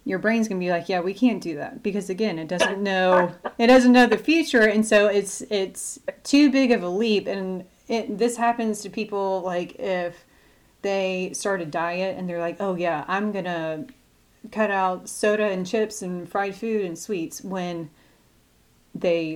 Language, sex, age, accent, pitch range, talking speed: English, female, 30-49, American, 170-205 Hz, 190 wpm